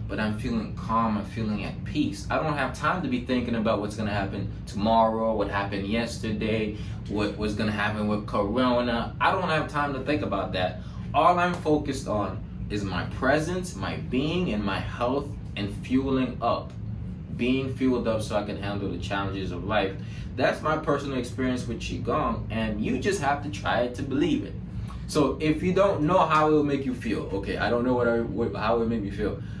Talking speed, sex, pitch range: 205 wpm, male, 105-130 Hz